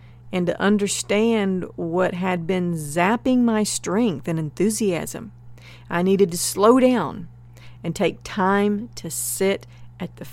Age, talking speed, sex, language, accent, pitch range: 40-59, 135 wpm, female, English, American, 120-205 Hz